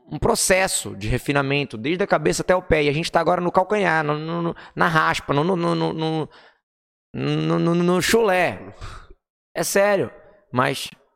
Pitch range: 110-150 Hz